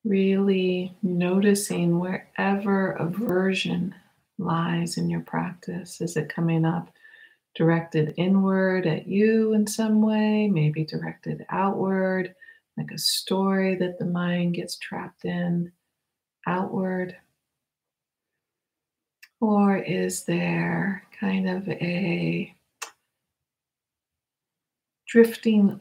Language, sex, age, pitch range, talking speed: English, female, 50-69, 170-200 Hz, 90 wpm